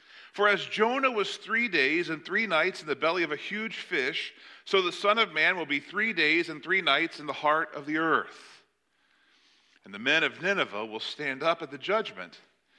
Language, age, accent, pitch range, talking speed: English, 40-59, American, 150-210 Hz, 210 wpm